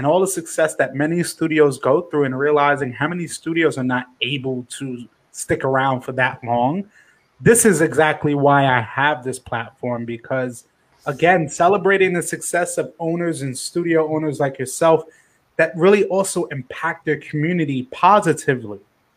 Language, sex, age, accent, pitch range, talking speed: English, male, 20-39, American, 135-175 Hz, 155 wpm